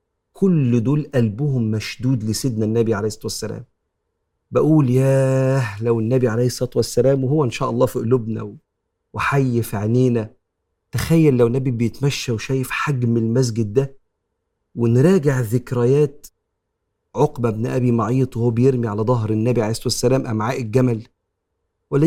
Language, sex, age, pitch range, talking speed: Arabic, male, 40-59, 115-140 Hz, 135 wpm